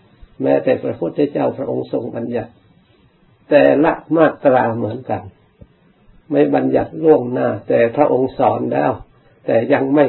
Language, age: Thai, 60-79